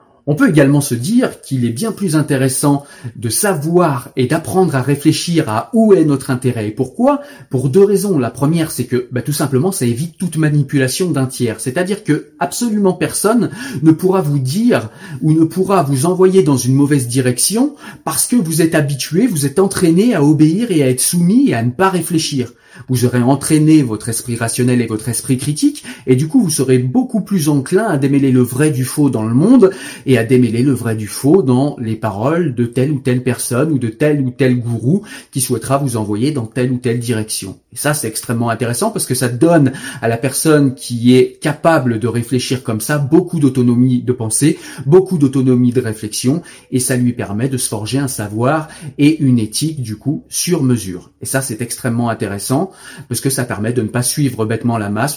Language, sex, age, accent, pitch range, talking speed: French, male, 30-49, French, 120-155 Hz, 210 wpm